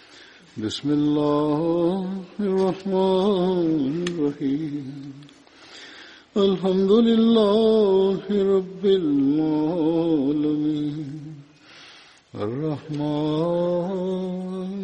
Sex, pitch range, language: male, 145-185 Hz, English